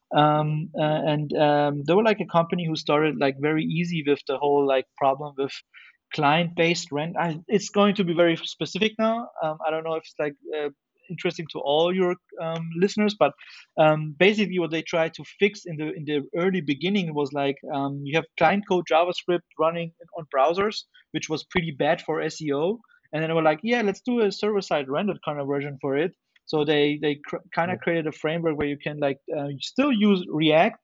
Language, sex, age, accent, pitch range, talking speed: English, male, 30-49, German, 150-180 Hz, 215 wpm